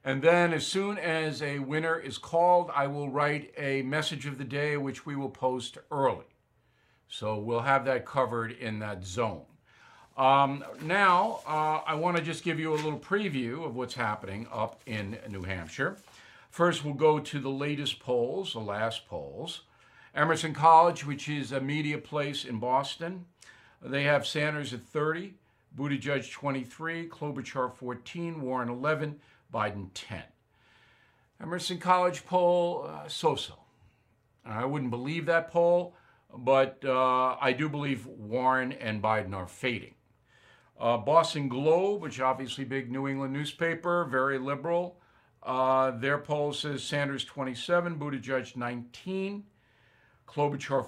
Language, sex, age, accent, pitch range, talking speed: English, male, 50-69, American, 130-160 Hz, 145 wpm